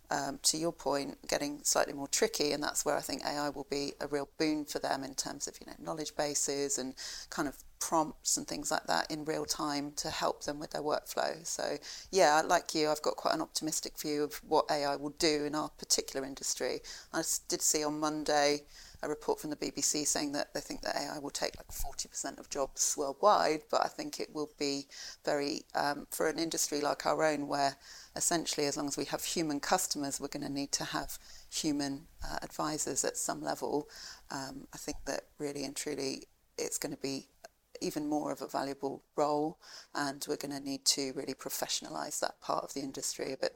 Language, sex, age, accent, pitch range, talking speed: English, female, 30-49, British, 140-155 Hz, 210 wpm